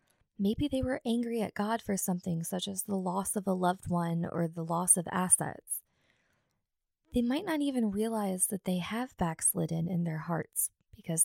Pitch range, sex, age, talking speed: 180-240 Hz, female, 20-39, 180 wpm